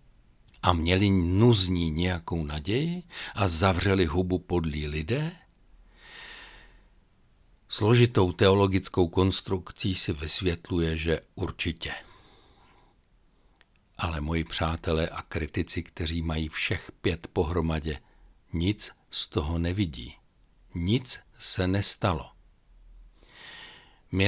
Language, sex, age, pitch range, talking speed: Czech, male, 60-79, 80-100 Hz, 85 wpm